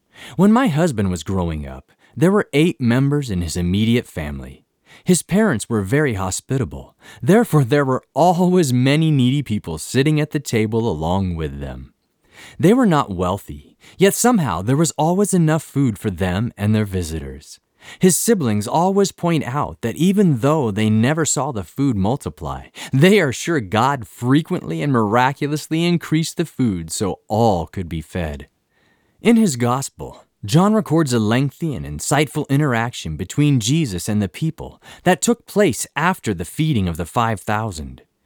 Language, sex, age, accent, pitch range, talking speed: English, male, 30-49, American, 105-165 Hz, 160 wpm